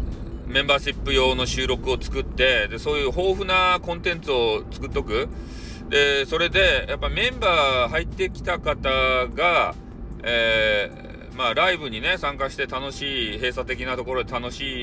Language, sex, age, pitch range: Japanese, male, 40-59, 120-170 Hz